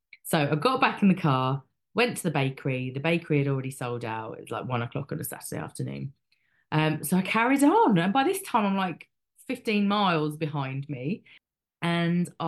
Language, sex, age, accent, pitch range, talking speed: English, female, 30-49, British, 150-190 Hz, 200 wpm